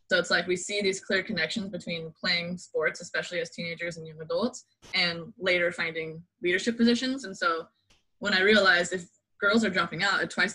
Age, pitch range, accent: 20-39, 170-215 Hz, American